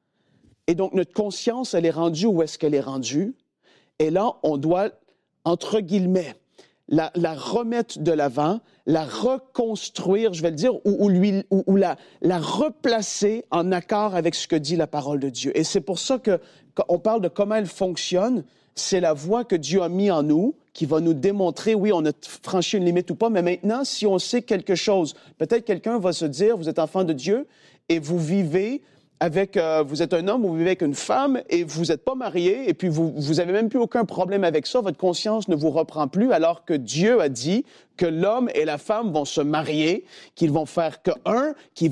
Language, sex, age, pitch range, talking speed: French, male, 40-59, 160-210 Hz, 215 wpm